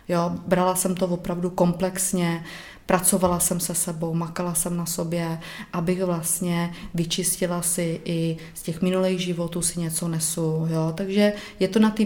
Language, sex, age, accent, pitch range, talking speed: Czech, female, 30-49, native, 170-190 Hz, 160 wpm